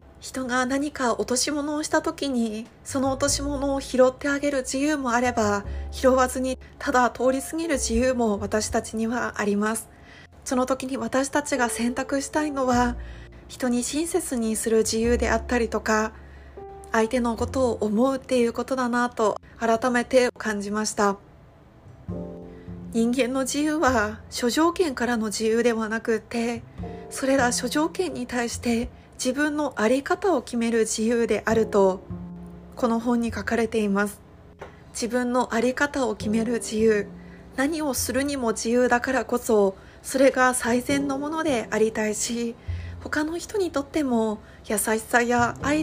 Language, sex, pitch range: Japanese, female, 220-265 Hz